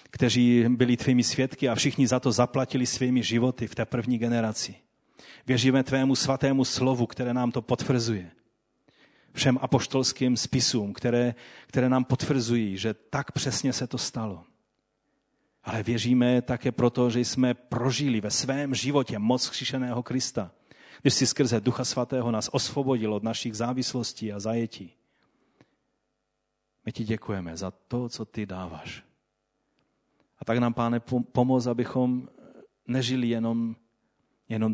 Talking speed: 135 wpm